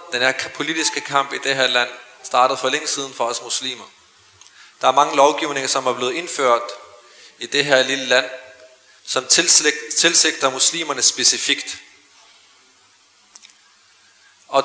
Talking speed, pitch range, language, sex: 135 wpm, 130-160 Hz, Danish, male